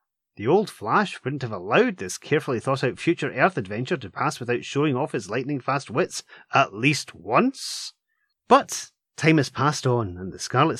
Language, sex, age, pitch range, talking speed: English, male, 30-49, 115-170 Hz, 185 wpm